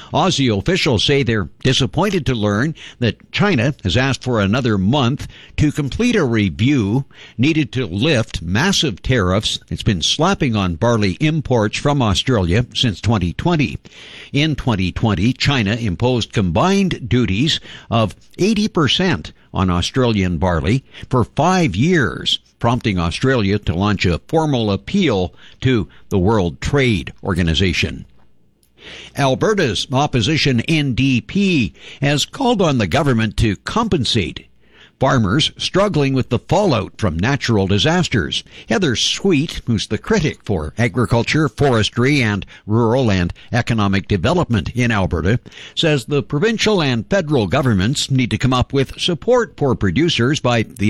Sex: male